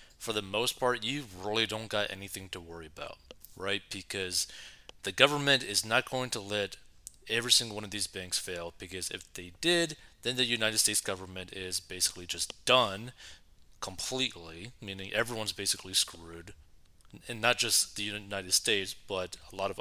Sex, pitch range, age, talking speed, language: male, 95-110 Hz, 30-49, 170 wpm, English